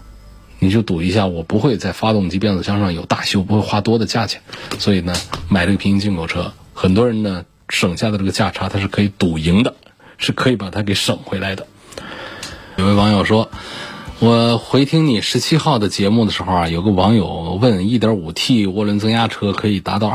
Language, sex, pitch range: Chinese, male, 95-115 Hz